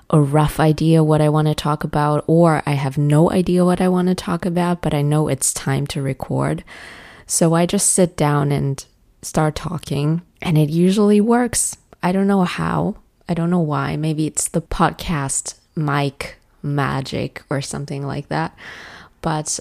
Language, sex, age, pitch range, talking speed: English, female, 20-39, 145-170 Hz, 175 wpm